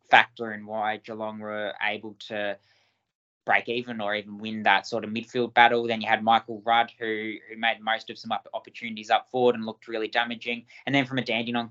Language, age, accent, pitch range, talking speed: English, 20-39, Australian, 105-120 Hz, 205 wpm